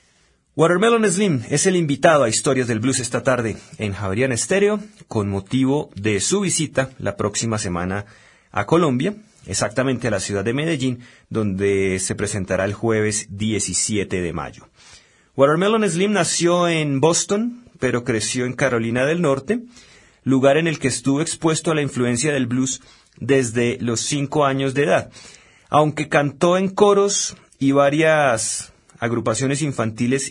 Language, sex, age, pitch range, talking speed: Spanish, male, 30-49, 110-150 Hz, 145 wpm